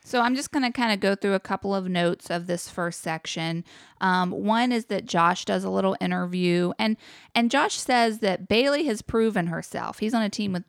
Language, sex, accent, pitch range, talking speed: English, female, American, 170-220 Hz, 225 wpm